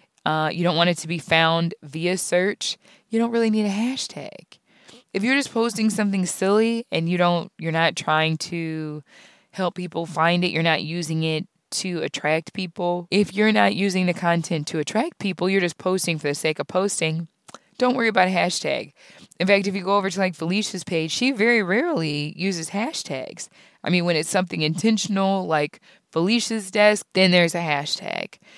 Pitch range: 160-200 Hz